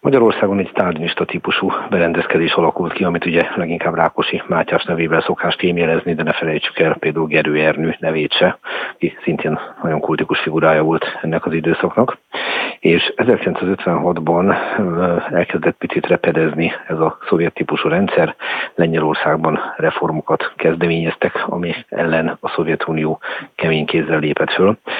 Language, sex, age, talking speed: Hungarian, male, 50-69, 130 wpm